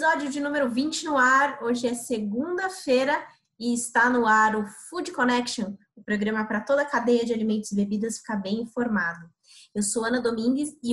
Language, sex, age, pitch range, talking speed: Portuguese, female, 20-39, 230-275 Hz, 185 wpm